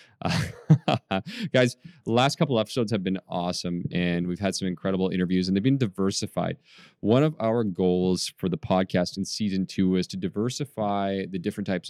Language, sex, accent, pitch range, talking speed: English, male, American, 95-125 Hz, 170 wpm